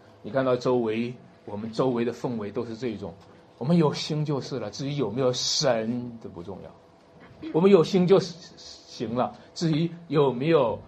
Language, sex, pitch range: Chinese, male, 120-190 Hz